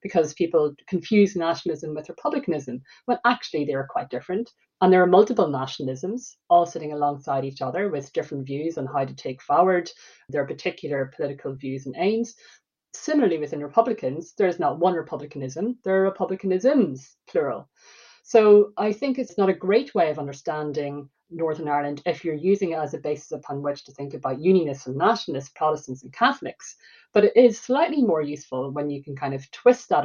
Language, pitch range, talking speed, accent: English, 145-205 Hz, 180 wpm, Irish